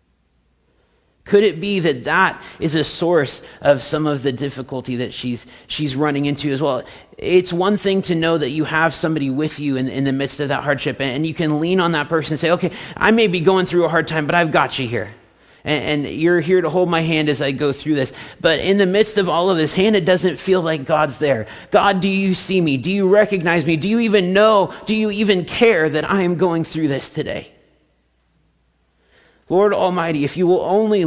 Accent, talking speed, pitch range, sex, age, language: American, 230 wpm, 140-185 Hz, male, 40-59, English